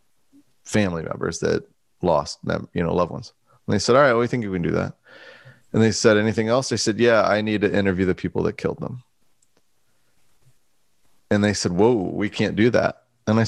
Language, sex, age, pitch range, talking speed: English, male, 30-49, 105-140 Hz, 210 wpm